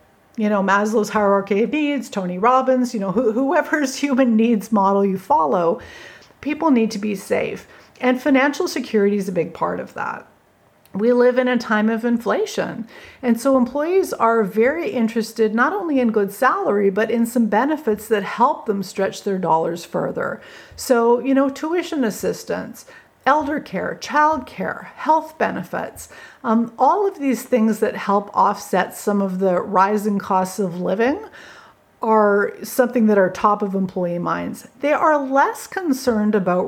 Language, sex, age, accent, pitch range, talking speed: English, female, 40-59, American, 200-265 Hz, 160 wpm